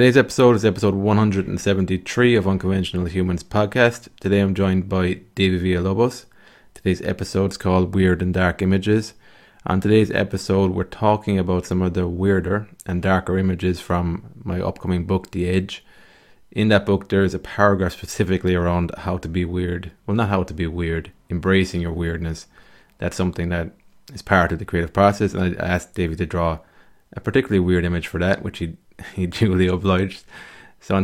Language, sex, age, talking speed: English, male, 20-39, 180 wpm